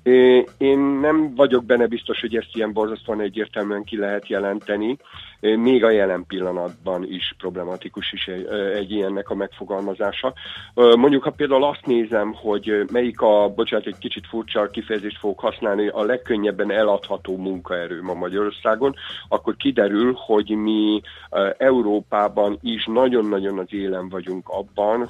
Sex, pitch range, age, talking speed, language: male, 95-115 Hz, 50-69, 135 wpm, Hungarian